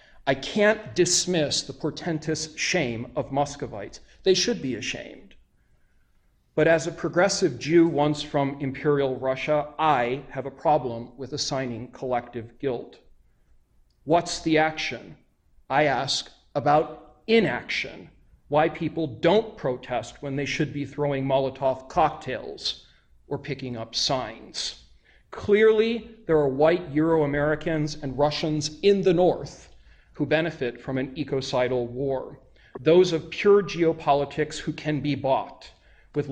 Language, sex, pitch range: English, male, 130-160 Hz